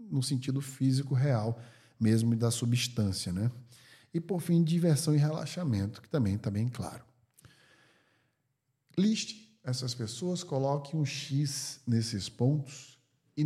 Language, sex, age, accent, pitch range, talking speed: Portuguese, male, 50-69, Brazilian, 110-140 Hz, 125 wpm